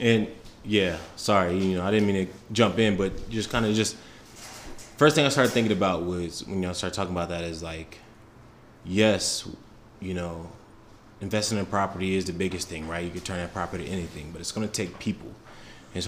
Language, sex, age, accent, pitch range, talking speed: English, male, 20-39, American, 90-110 Hz, 215 wpm